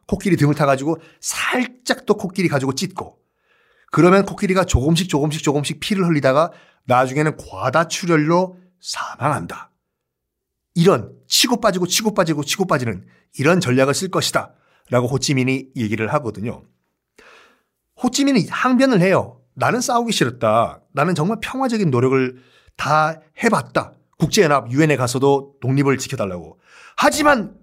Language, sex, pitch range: Korean, male, 145-220 Hz